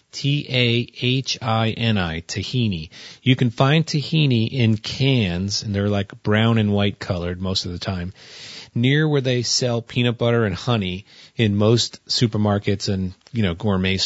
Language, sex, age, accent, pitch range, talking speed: English, male, 30-49, American, 100-125 Hz, 165 wpm